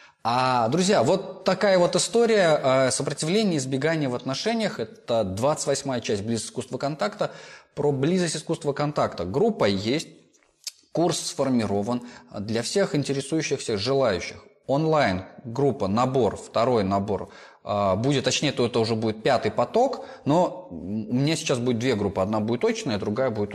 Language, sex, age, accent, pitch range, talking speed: Russian, male, 20-39, native, 110-165 Hz, 145 wpm